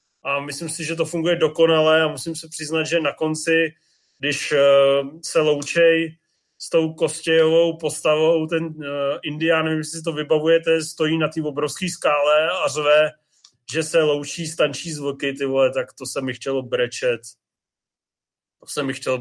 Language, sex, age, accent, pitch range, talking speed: Czech, male, 30-49, native, 150-175 Hz, 160 wpm